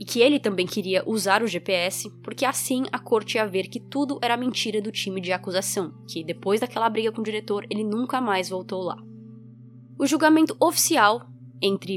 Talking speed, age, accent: 190 wpm, 20-39, Brazilian